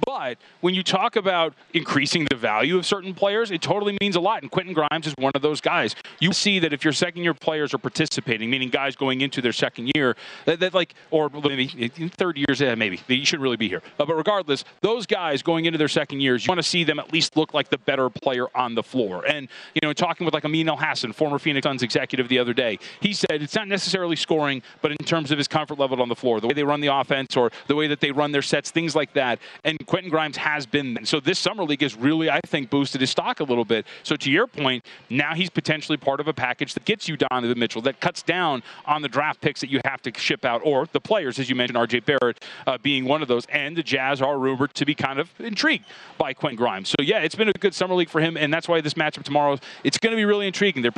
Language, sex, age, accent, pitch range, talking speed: English, male, 30-49, American, 135-165 Hz, 260 wpm